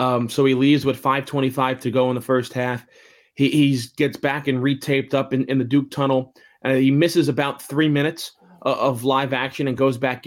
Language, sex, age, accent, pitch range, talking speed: English, male, 20-39, American, 130-145 Hz, 215 wpm